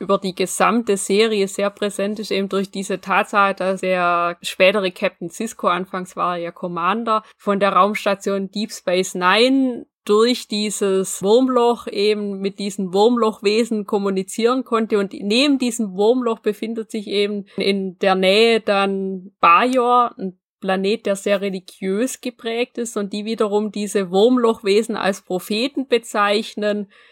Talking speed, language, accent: 140 wpm, German, German